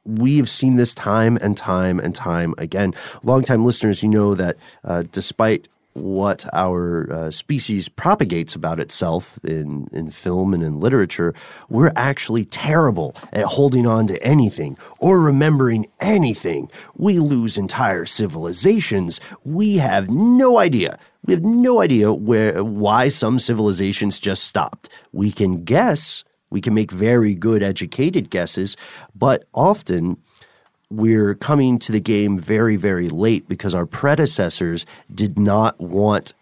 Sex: male